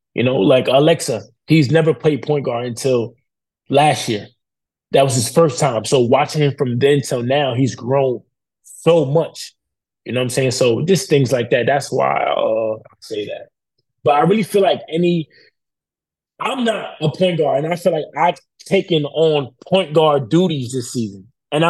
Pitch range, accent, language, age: 125-160 Hz, American, English, 20-39